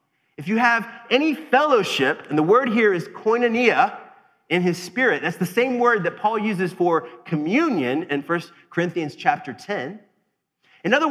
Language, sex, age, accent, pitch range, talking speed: English, male, 30-49, American, 170-250 Hz, 160 wpm